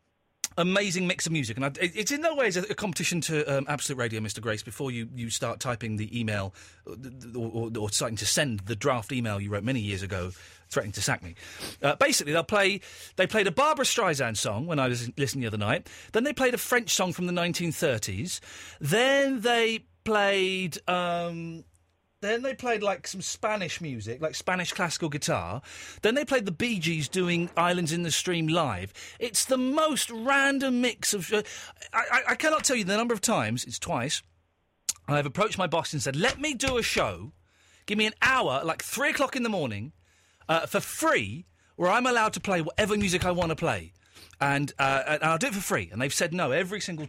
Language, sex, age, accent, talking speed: English, male, 40-59, British, 210 wpm